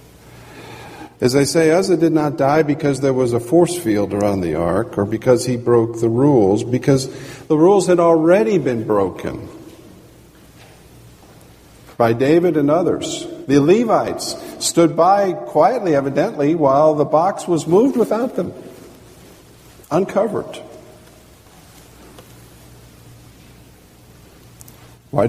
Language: English